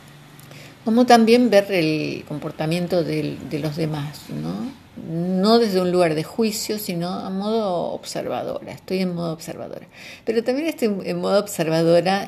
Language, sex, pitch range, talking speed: Spanish, female, 155-200 Hz, 135 wpm